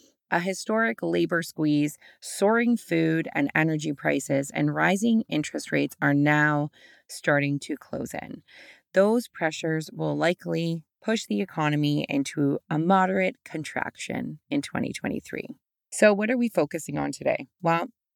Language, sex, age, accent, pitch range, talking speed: English, female, 20-39, American, 150-210 Hz, 130 wpm